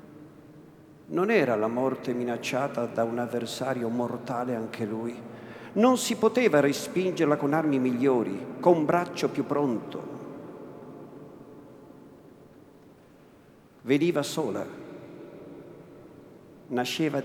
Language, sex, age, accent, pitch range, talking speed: Italian, male, 50-69, native, 130-170 Hz, 90 wpm